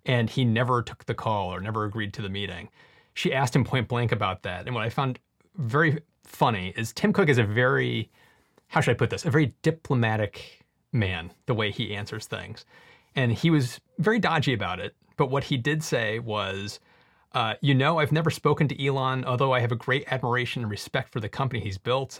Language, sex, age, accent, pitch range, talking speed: English, male, 30-49, American, 110-140 Hz, 215 wpm